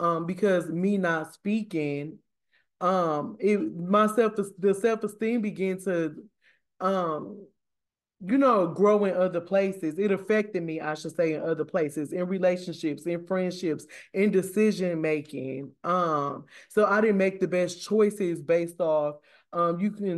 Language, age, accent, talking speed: English, 20-39, American, 130 wpm